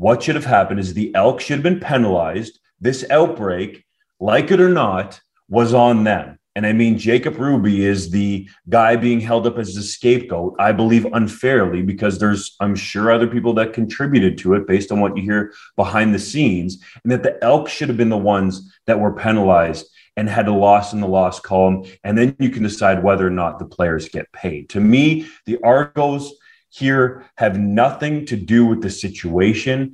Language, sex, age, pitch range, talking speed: English, male, 30-49, 100-140 Hz, 200 wpm